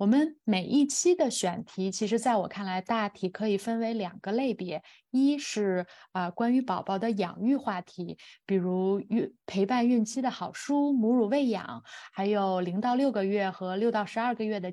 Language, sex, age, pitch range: Chinese, female, 20-39, 190-250 Hz